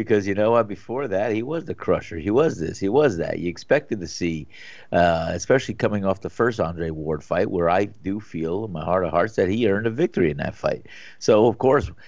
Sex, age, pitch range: male, 50-69, 90-115 Hz